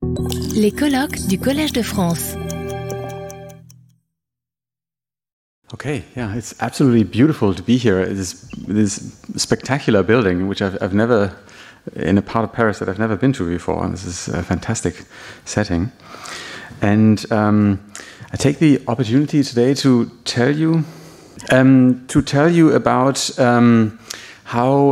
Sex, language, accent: male, French, German